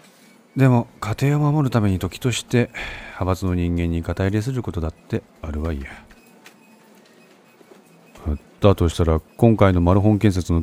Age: 40-59